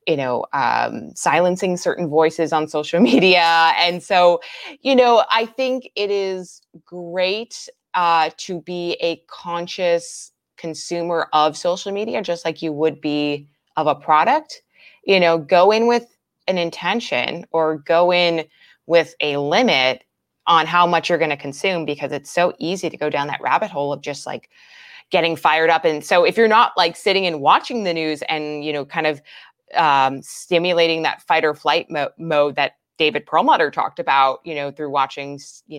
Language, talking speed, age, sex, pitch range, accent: English, 175 wpm, 20-39, female, 150-190 Hz, American